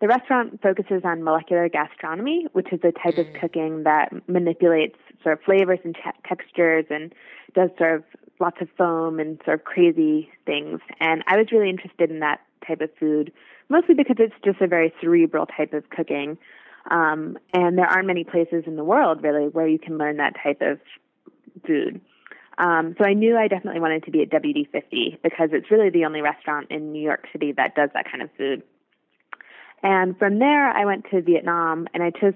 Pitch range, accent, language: 155-185 Hz, American, English